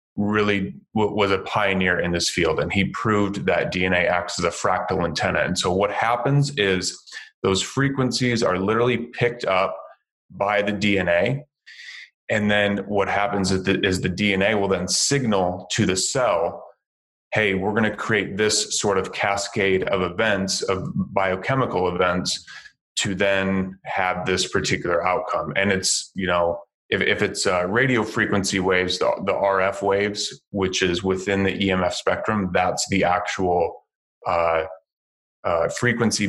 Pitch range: 95-105 Hz